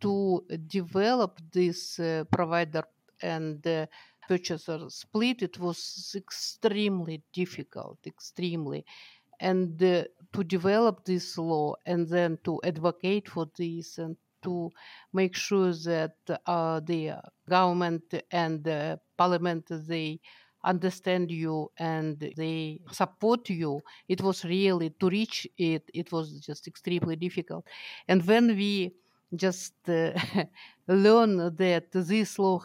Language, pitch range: English, 165-190 Hz